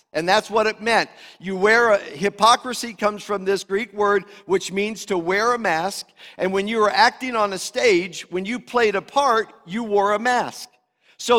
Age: 50-69